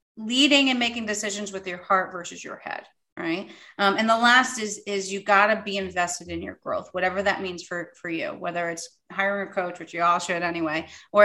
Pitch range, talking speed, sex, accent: 190-240 Hz, 225 wpm, female, American